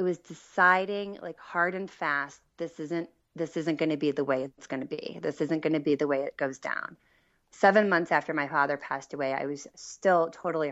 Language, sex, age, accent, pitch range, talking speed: English, female, 30-49, American, 145-175 Hz, 230 wpm